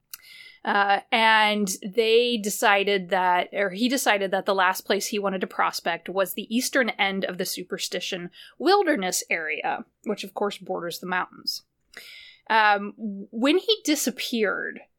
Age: 20-39